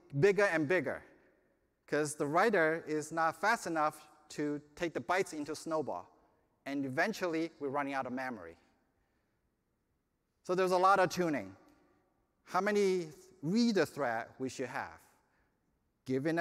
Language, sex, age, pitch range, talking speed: English, male, 30-49, 135-185 Hz, 135 wpm